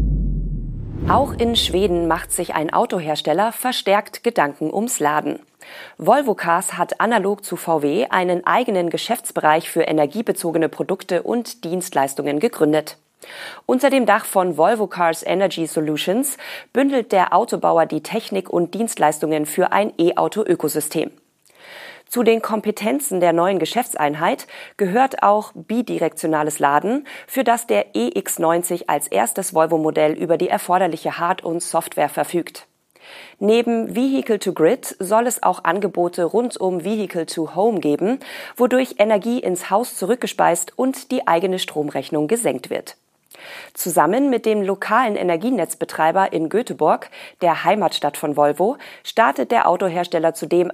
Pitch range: 165-225 Hz